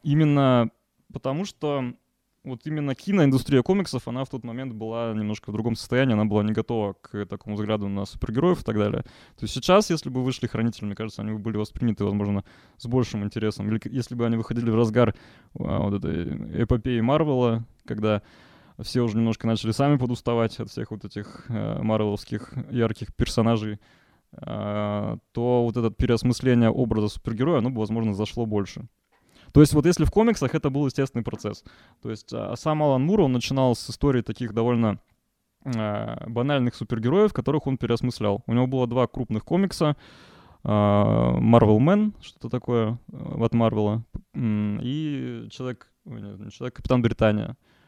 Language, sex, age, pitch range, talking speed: Russian, male, 20-39, 110-130 Hz, 160 wpm